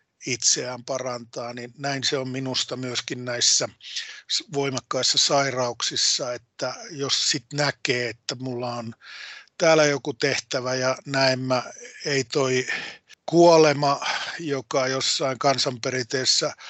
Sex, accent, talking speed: male, native, 105 wpm